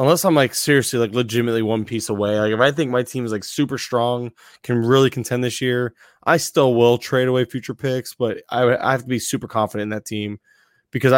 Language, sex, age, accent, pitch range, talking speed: English, male, 20-39, American, 115-130 Hz, 230 wpm